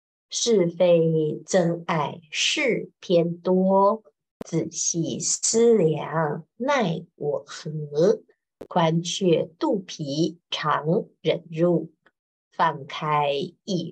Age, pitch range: 50-69, 160-205 Hz